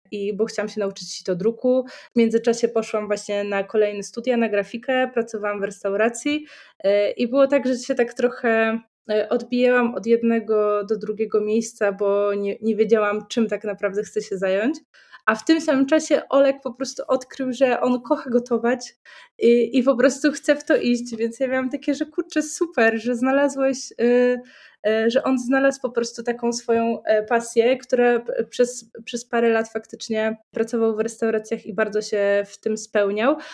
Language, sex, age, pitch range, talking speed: Polish, female, 20-39, 205-250 Hz, 175 wpm